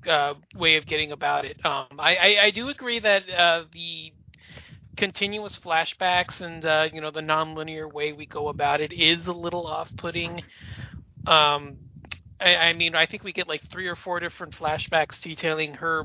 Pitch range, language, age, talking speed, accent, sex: 150-170 Hz, English, 30-49, 180 wpm, American, male